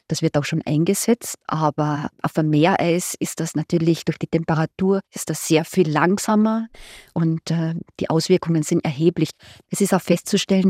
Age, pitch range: 30-49, 165-200 Hz